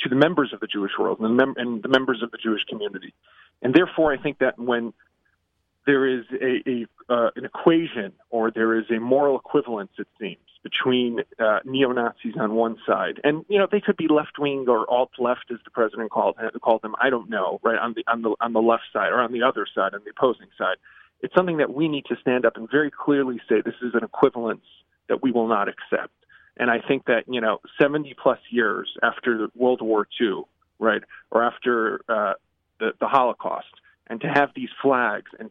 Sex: male